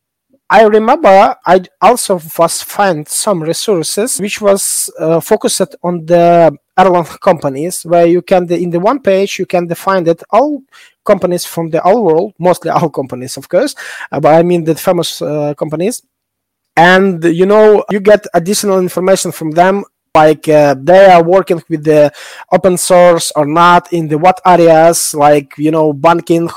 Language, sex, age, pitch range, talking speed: English, male, 20-39, 160-200 Hz, 165 wpm